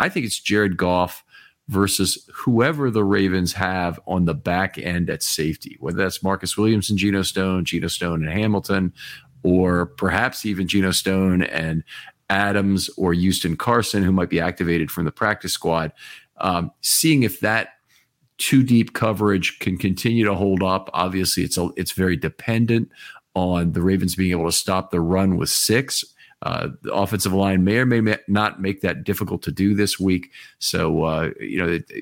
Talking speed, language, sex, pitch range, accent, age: 175 wpm, English, male, 85-105 Hz, American, 40-59